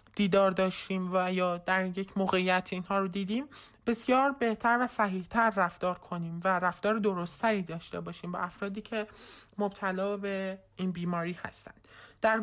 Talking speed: 145 wpm